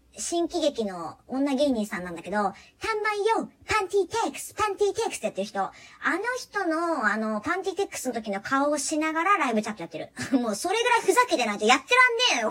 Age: 40-59